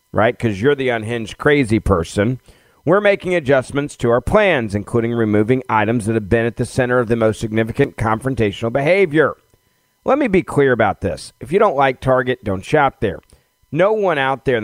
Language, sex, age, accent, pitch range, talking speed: English, male, 40-59, American, 110-150 Hz, 195 wpm